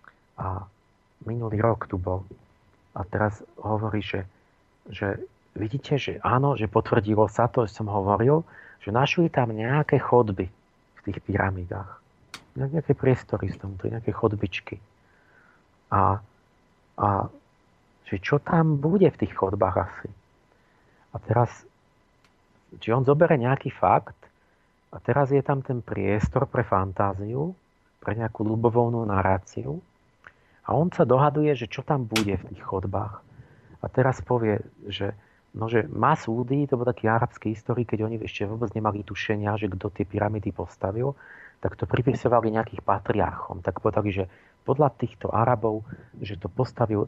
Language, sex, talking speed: Slovak, male, 145 wpm